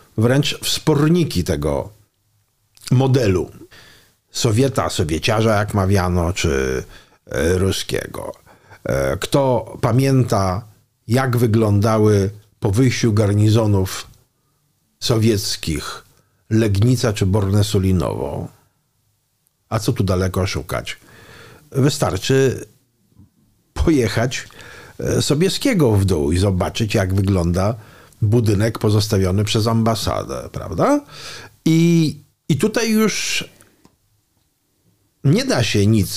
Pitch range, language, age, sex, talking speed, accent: 100-135 Hz, Polish, 50-69, male, 80 wpm, native